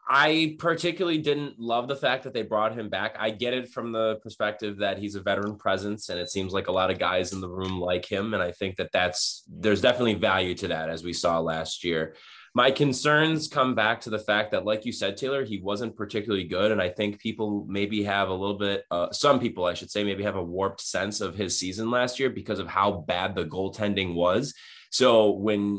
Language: English